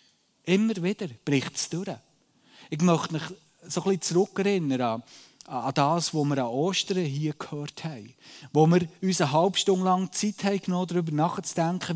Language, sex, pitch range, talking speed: German, male, 145-185 Hz, 165 wpm